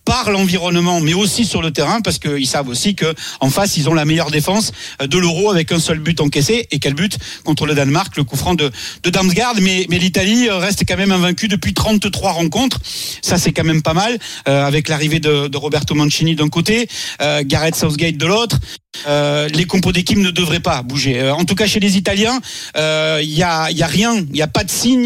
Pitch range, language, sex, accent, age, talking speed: 155-195 Hz, French, male, French, 40-59, 230 wpm